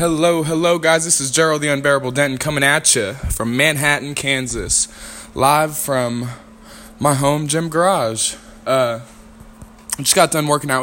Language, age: English, 20-39